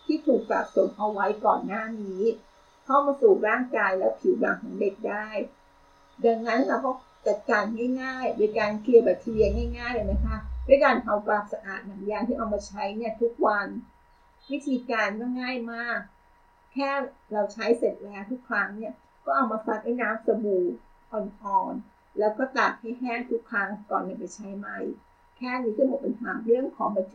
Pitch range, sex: 205-250 Hz, female